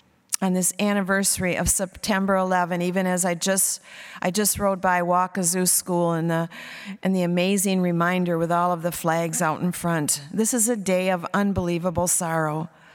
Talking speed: 170 wpm